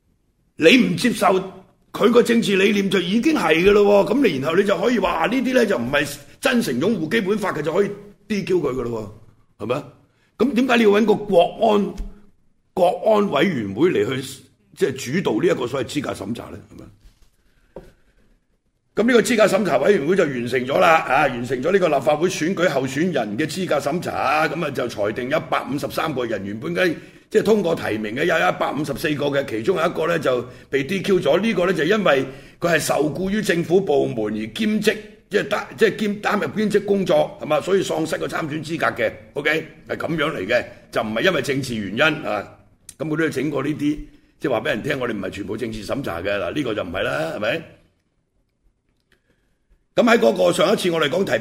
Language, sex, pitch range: Chinese, male, 130-205 Hz